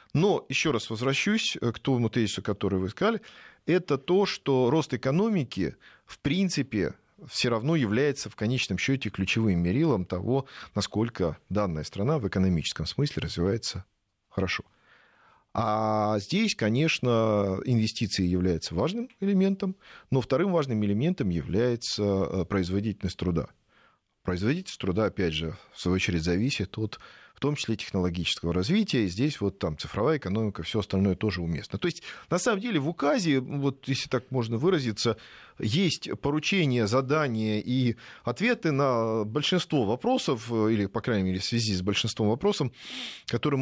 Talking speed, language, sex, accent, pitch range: 140 wpm, Russian, male, native, 100-145 Hz